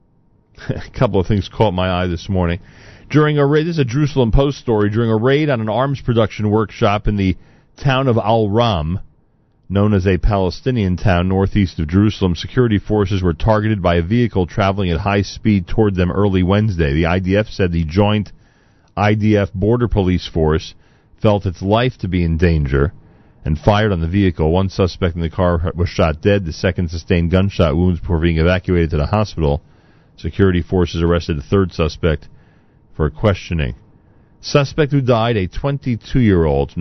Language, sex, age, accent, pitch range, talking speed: English, male, 40-59, American, 85-105 Hz, 175 wpm